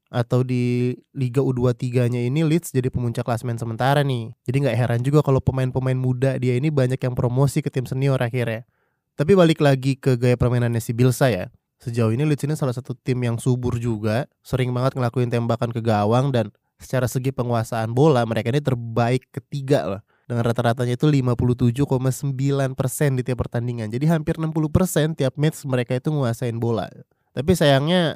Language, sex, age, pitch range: Indonesian, male, 20-39, 125-150 Hz